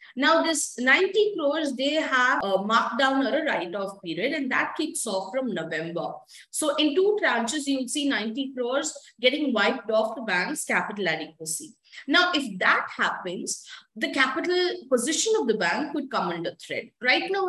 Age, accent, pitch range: 20-39, Indian, 200-295 Hz